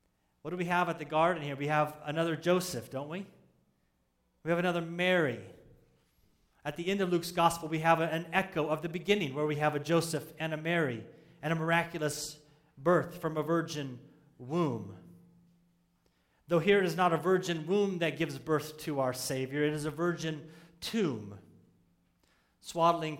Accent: American